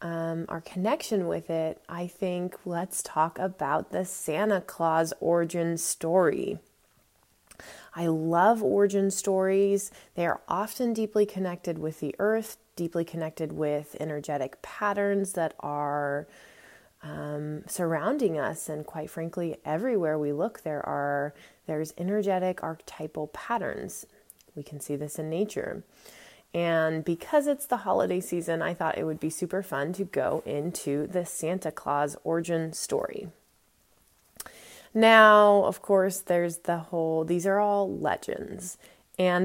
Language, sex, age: English, female, 20-39